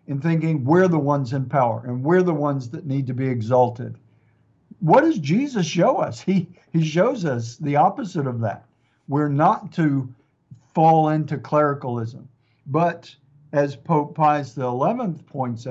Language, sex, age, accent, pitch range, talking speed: English, male, 50-69, American, 130-175 Hz, 155 wpm